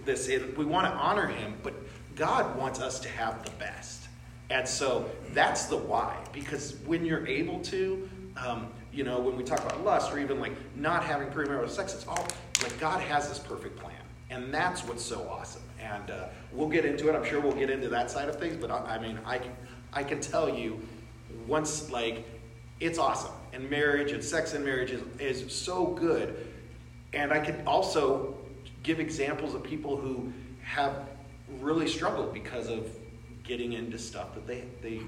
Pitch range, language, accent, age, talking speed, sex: 115-145 Hz, English, American, 40-59, 190 wpm, male